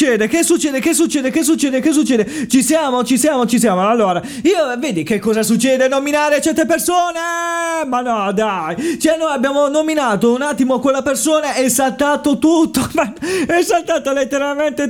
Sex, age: male, 30-49